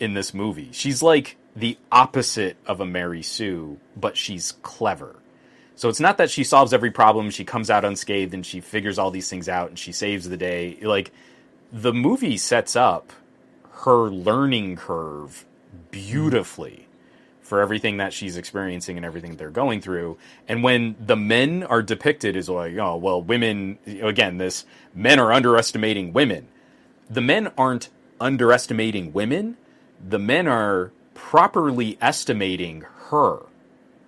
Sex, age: male, 30-49